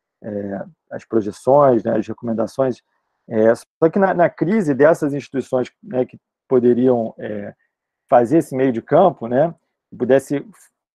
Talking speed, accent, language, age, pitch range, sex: 135 wpm, Brazilian, Portuguese, 40-59, 130-170 Hz, male